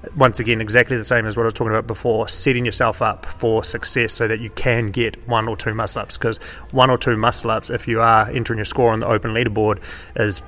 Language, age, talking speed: English, 30-49, 240 wpm